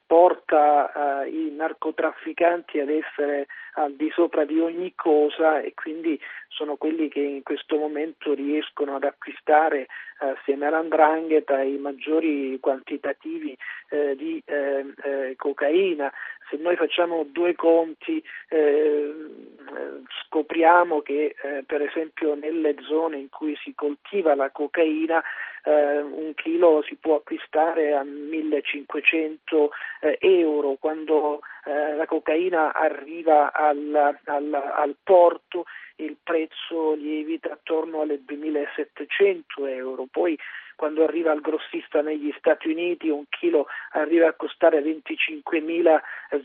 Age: 40-59